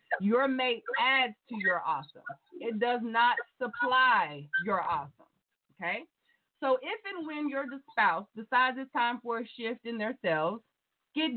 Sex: female